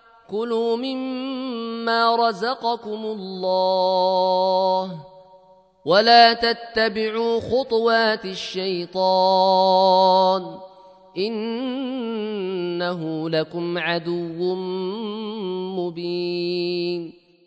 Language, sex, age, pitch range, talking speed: Arabic, male, 30-49, 180-230 Hz, 40 wpm